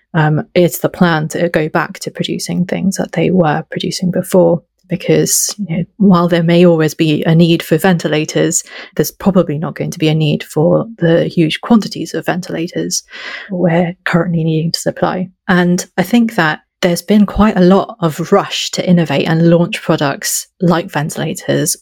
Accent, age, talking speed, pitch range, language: British, 30-49, 170 wpm, 165-195 Hz, English